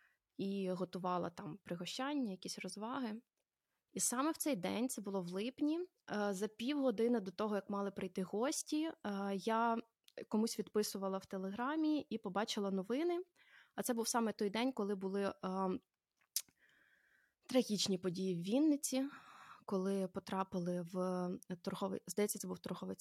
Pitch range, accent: 190-235 Hz, native